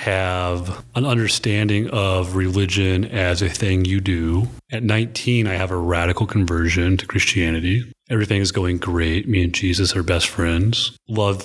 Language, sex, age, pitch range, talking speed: English, male, 30-49, 90-105 Hz, 155 wpm